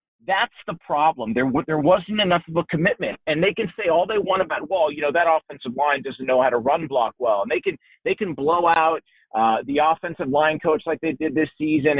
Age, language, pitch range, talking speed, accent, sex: 40-59, English, 150-195 Hz, 240 wpm, American, male